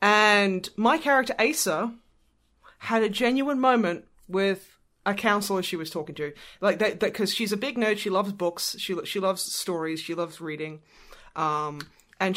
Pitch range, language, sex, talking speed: 160-215 Hz, English, female, 165 wpm